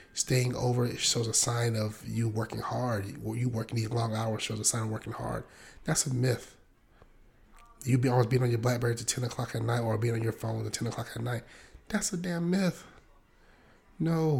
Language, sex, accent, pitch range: English, male, American, 115-135 Hz